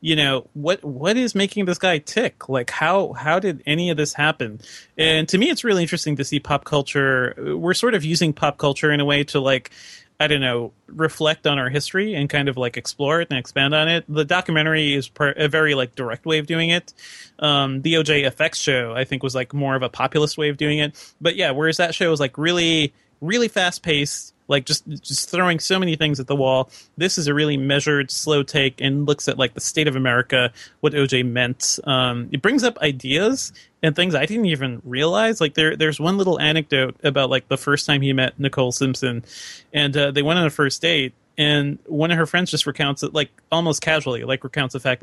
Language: English